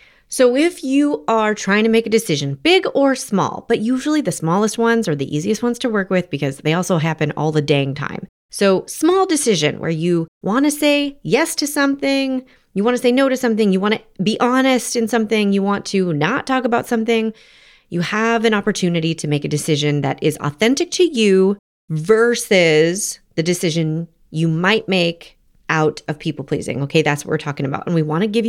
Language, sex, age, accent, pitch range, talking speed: English, female, 30-49, American, 165-270 Hz, 195 wpm